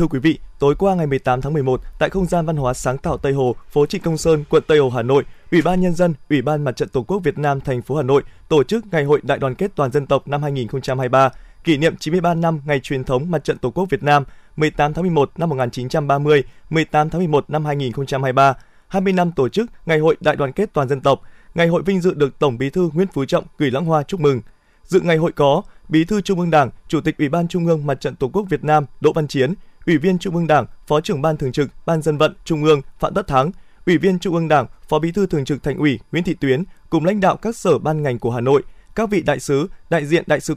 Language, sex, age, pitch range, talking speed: Vietnamese, male, 20-39, 140-175 Hz, 300 wpm